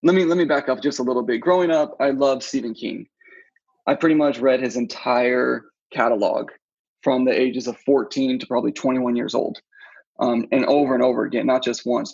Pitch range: 125-205 Hz